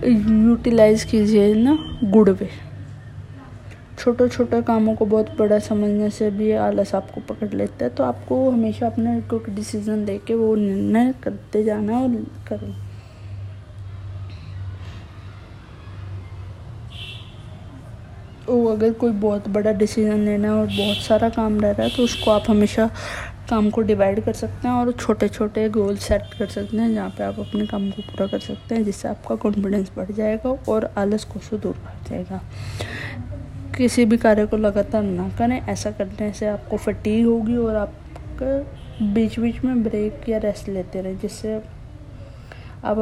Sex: female